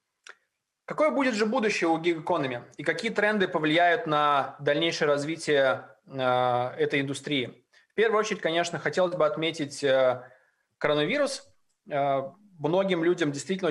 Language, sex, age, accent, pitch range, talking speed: Russian, male, 20-39, native, 150-185 Hz, 125 wpm